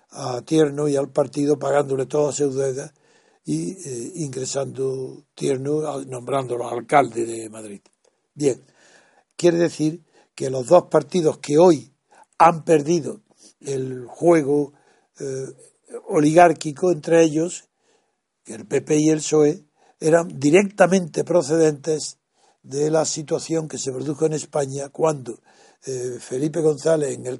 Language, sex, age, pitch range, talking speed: Spanish, male, 60-79, 135-160 Hz, 125 wpm